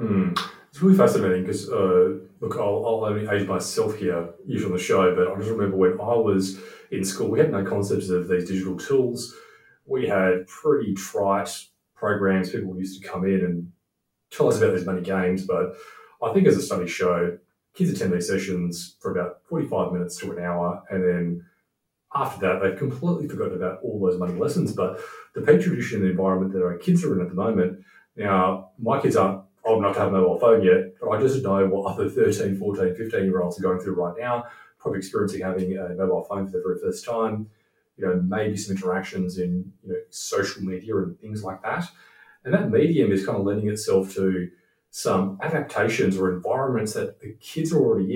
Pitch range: 95-115 Hz